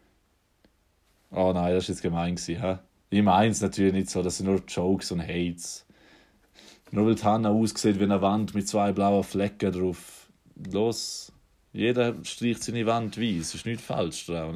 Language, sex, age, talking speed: German, male, 20-39, 175 wpm